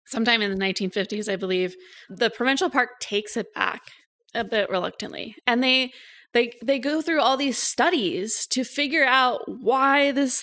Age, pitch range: 20-39, 195-255 Hz